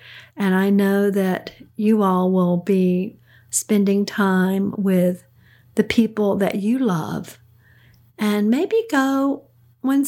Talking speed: 120 wpm